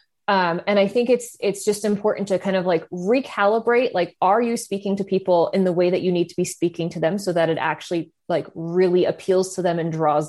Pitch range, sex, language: 180-225 Hz, female, English